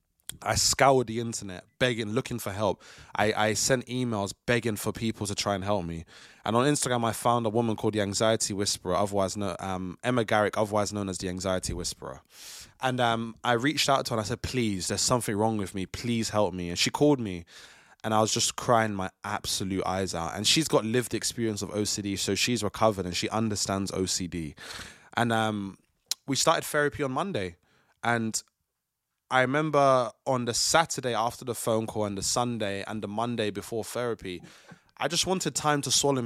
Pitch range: 100-120 Hz